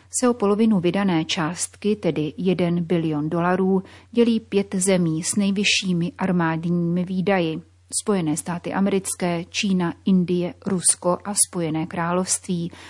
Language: Czech